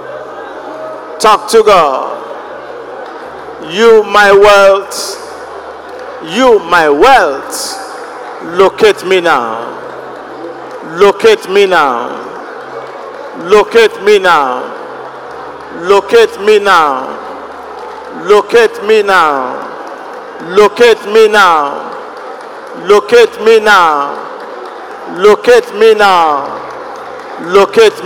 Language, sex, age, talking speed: English, male, 50-69, 75 wpm